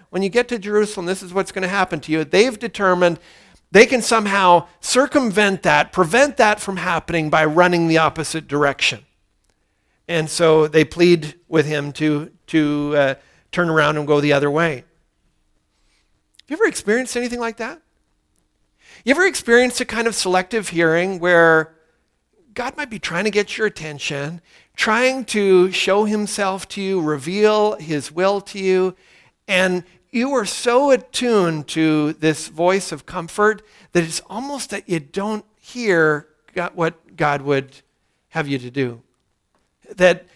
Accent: American